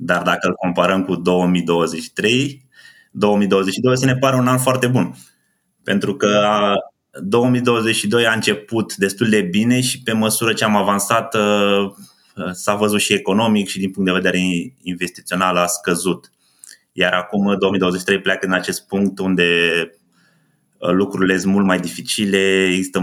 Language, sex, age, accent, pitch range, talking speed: Romanian, male, 20-39, native, 90-105 Hz, 140 wpm